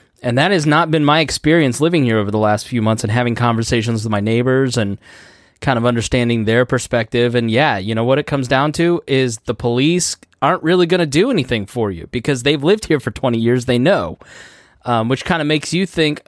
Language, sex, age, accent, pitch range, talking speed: English, male, 20-39, American, 115-150 Hz, 230 wpm